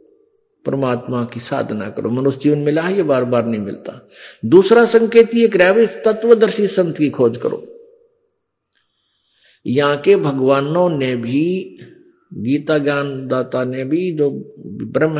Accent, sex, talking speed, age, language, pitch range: native, male, 125 wpm, 50-69, Hindi, 140-195 Hz